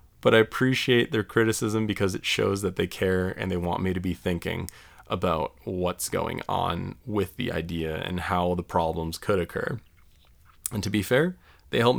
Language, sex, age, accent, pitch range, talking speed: English, male, 20-39, American, 90-110 Hz, 185 wpm